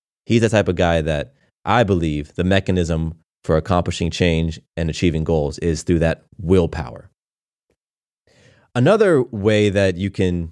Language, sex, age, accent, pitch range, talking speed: English, male, 30-49, American, 85-120 Hz, 145 wpm